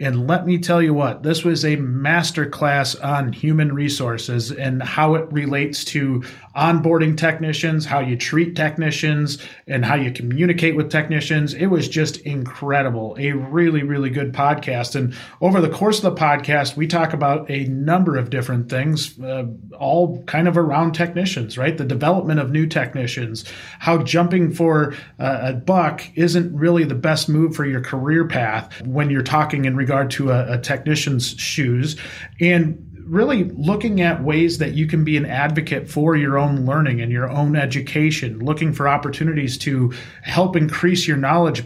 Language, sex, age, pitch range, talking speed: English, male, 30-49, 135-165 Hz, 170 wpm